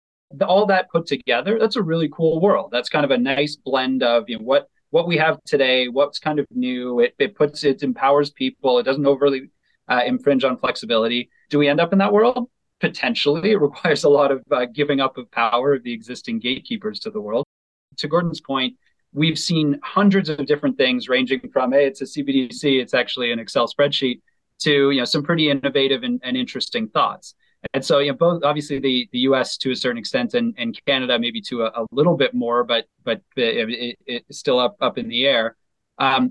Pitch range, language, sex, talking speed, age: 130-185 Hz, English, male, 215 wpm, 30-49